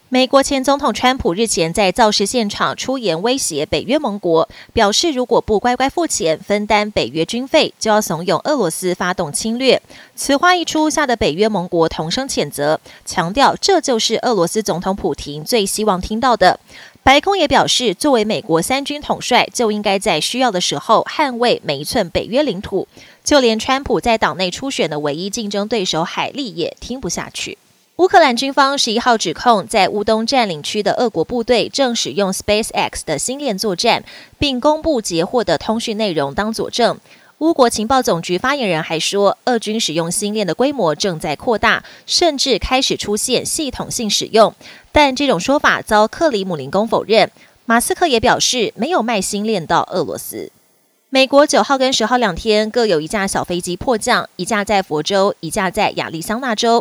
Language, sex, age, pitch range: Chinese, female, 20-39, 190-260 Hz